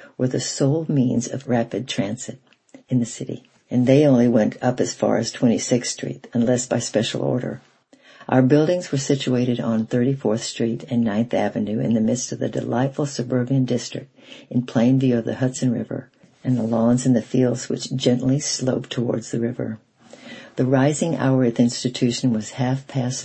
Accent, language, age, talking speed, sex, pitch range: American, English, 60-79, 185 wpm, female, 115-135 Hz